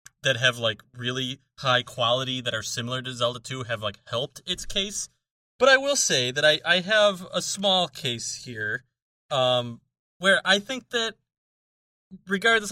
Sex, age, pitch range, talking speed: male, 30-49, 120-170 Hz, 165 wpm